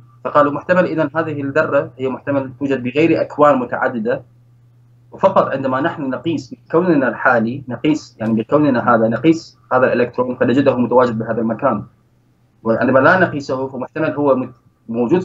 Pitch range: 115-135 Hz